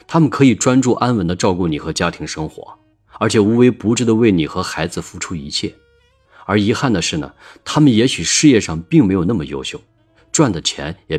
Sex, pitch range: male, 85-115 Hz